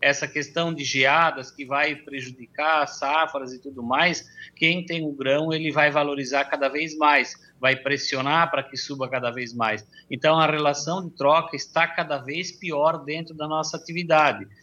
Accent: Brazilian